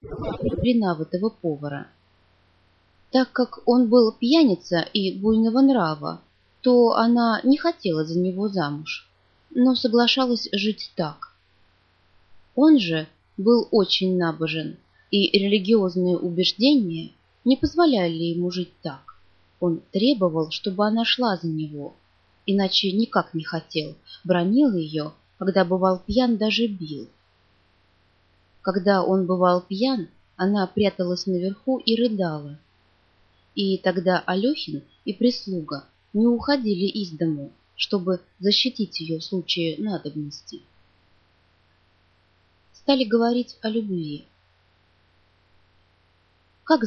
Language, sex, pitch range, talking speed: Russian, female, 150-225 Hz, 100 wpm